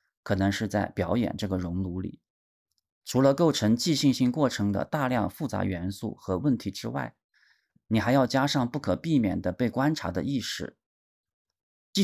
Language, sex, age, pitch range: Chinese, male, 30-49, 95-125 Hz